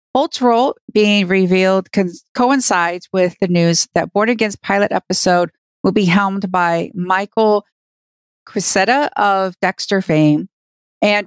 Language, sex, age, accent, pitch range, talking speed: English, female, 40-59, American, 190-220 Hz, 120 wpm